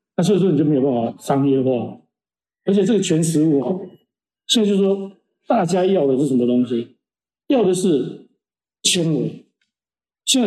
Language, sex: Chinese, male